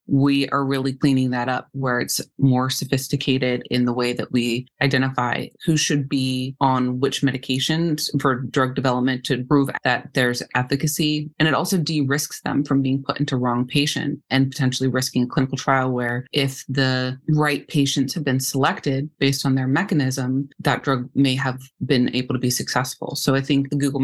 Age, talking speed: 30-49, 180 wpm